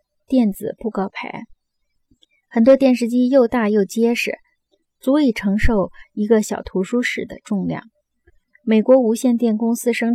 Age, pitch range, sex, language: 20-39, 200-245 Hz, female, Chinese